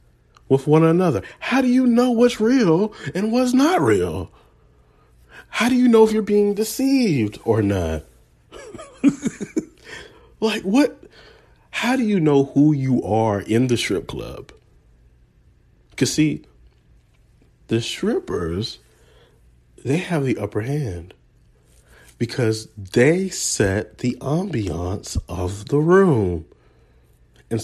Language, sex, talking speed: English, male, 115 wpm